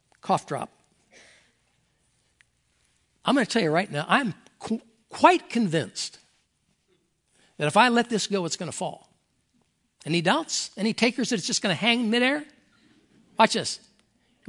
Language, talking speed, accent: English, 150 wpm, American